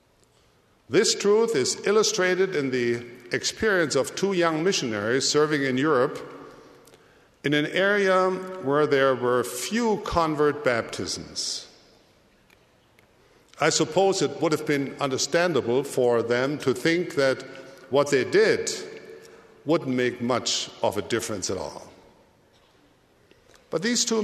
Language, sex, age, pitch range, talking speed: English, male, 50-69, 130-190 Hz, 120 wpm